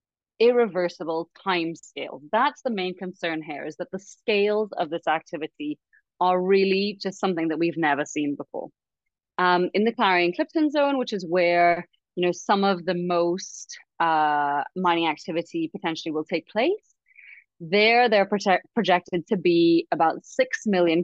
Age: 30-49